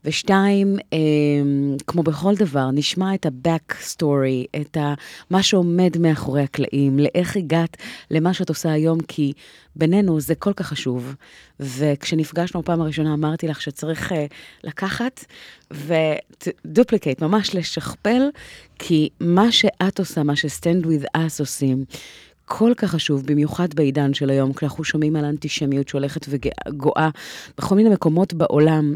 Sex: female